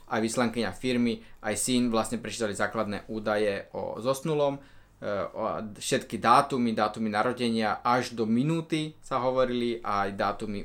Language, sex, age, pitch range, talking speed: Slovak, male, 20-39, 110-130 Hz, 125 wpm